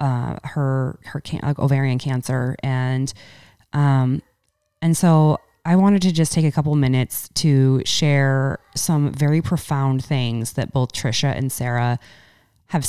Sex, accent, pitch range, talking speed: female, American, 125-150 Hz, 145 wpm